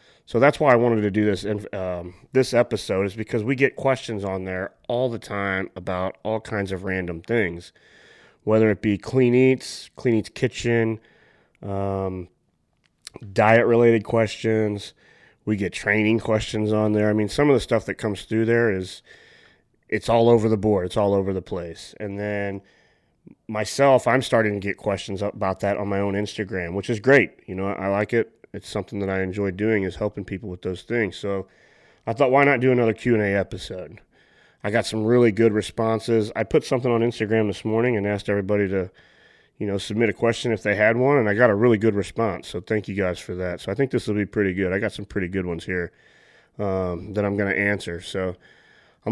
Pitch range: 100-115 Hz